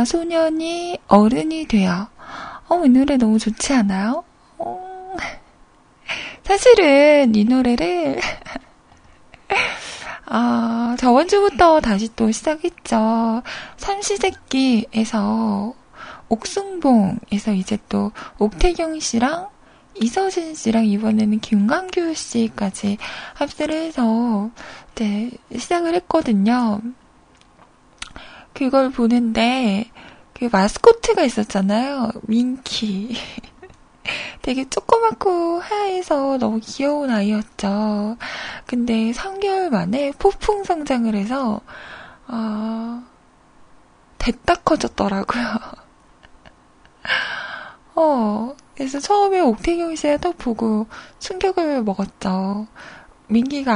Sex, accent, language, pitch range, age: female, native, Korean, 220-325 Hz, 20-39